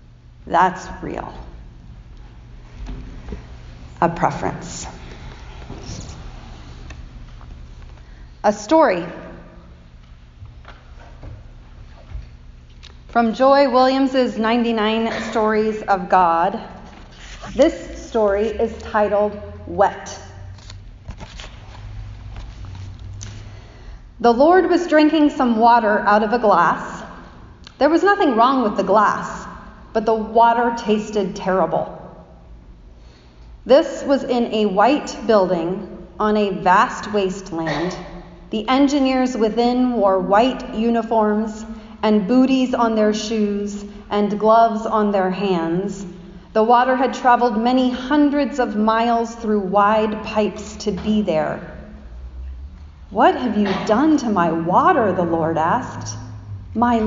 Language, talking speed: English, 95 wpm